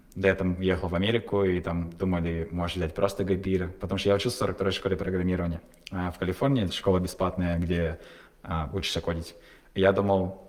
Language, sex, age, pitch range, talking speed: Russian, male, 20-39, 90-100 Hz, 195 wpm